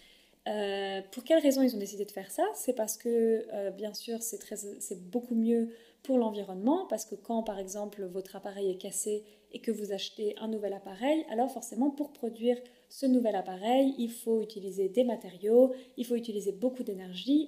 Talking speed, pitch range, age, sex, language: 190 wpm, 200-255 Hz, 30-49, female, French